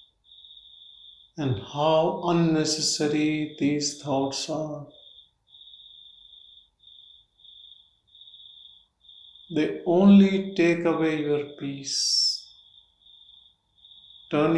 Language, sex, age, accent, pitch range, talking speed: English, male, 50-69, Indian, 100-155 Hz, 55 wpm